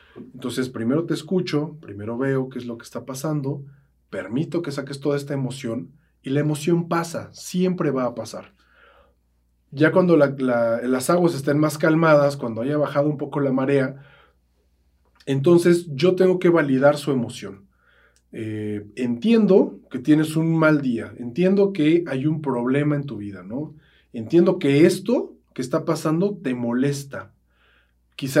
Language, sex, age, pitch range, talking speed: Spanish, male, 40-59, 120-155 Hz, 150 wpm